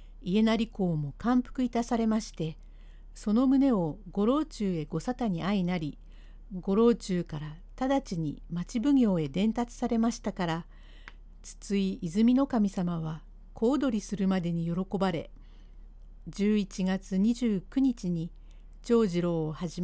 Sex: female